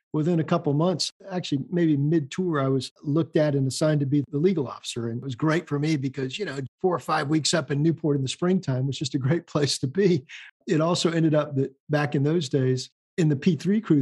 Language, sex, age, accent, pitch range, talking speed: English, male, 50-69, American, 140-175 Hz, 250 wpm